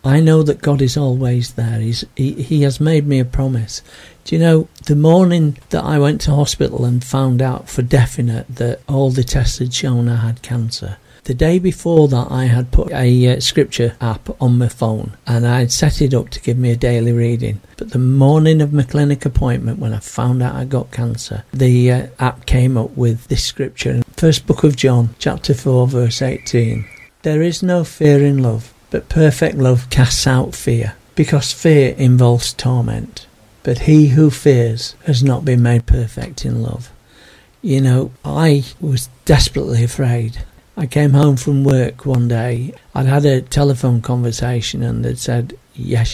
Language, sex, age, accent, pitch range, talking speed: English, male, 50-69, British, 120-140 Hz, 185 wpm